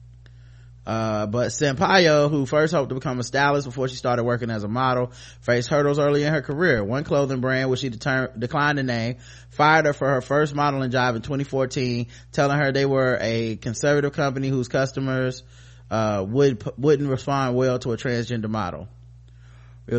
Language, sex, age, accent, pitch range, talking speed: English, male, 20-39, American, 115-135 Hz, 180 wpm